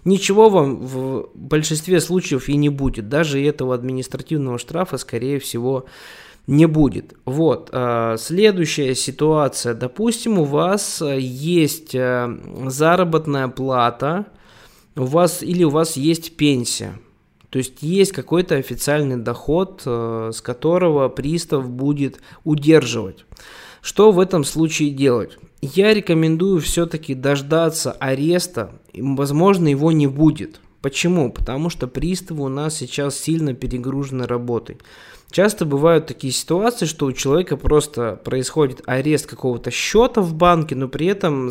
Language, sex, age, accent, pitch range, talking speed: Russian, male, 20-39, native, 130-165 Hz, 120 wpm